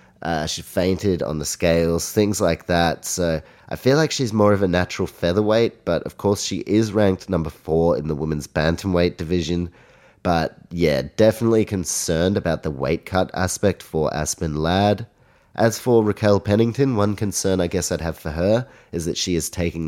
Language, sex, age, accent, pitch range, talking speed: English, male, 30-49, Australian, 80-105 Hz, 185 wpm